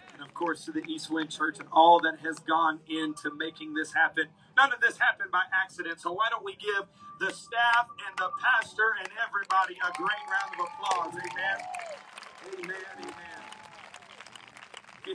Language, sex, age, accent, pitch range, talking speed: English, male, 40-59, American, 190-250 Hz, 165 wpm